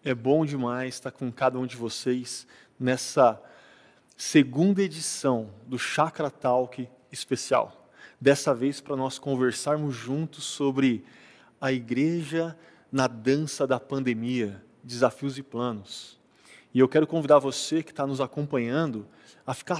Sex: male